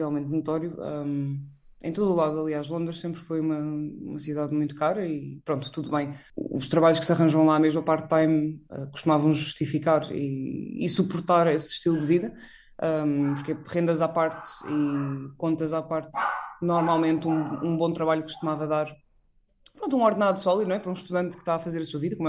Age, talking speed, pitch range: 20-39, 195 wpm, 155-175 Hz